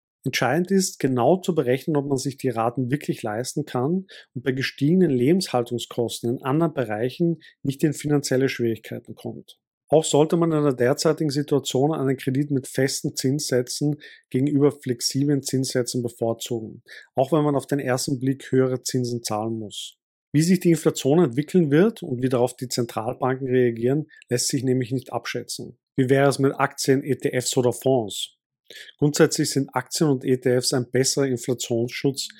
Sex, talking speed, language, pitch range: male, 155 wpm, German, 125-145 Hz